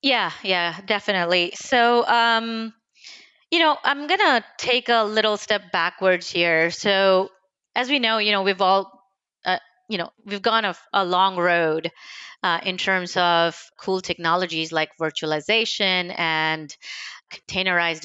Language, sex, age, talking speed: English, female, 30-49, 145 wpm